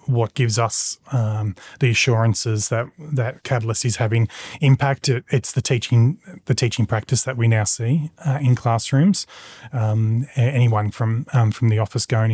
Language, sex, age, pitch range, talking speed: English, male, 30-49, 110-130 Hz, 165 wpm